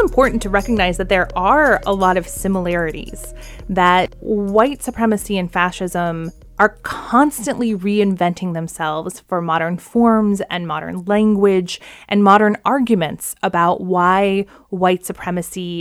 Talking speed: 125 wpm